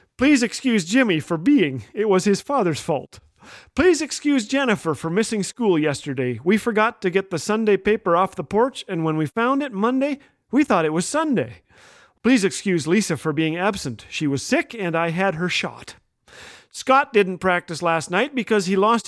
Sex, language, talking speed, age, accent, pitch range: male, English, 190 wpm, 40-59, American, 155-215 Hz